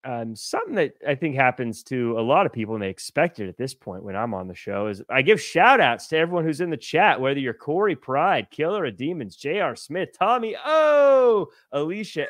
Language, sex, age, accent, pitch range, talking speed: English, male, 30-49, American, 115-155 Hz, 225 wpm